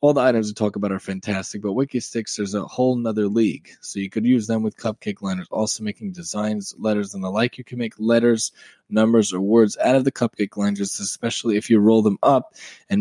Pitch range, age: 105-125 Hz, 20-39